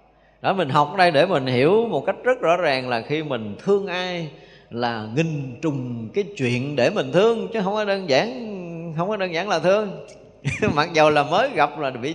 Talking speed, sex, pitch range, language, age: 215 wpm, male, 130-200 Hz, Vietnamese, 20-39